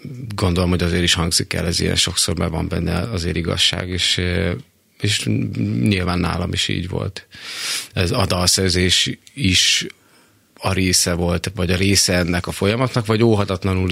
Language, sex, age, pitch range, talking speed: Hungarian, male, 30-49, 90-105 Hz, 150 wpm